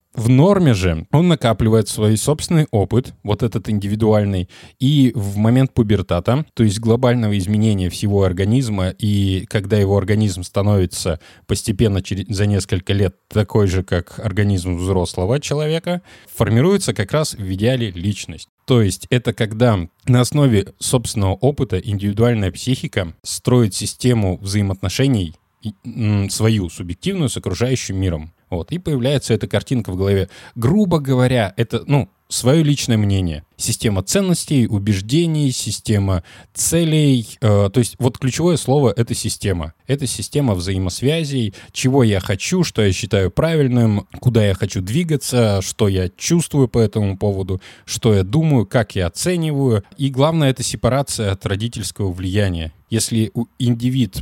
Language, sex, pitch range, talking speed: Russian, male, 100-125 Hz, 135 wpm